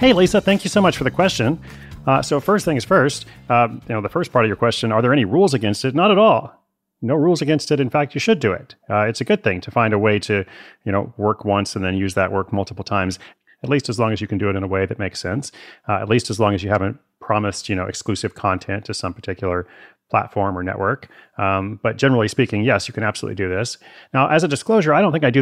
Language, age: English, 30-49